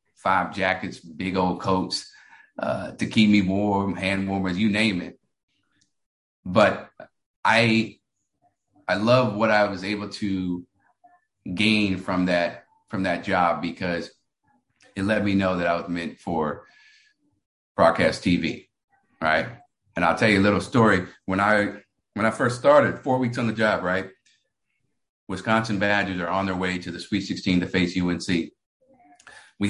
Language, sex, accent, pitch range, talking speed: English, male, American, 90-110 Hz, 150 wpm